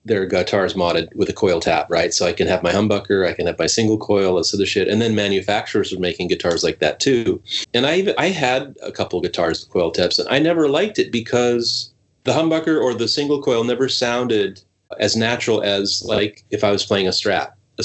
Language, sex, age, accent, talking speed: English, male, 30-49, American, 230 wpm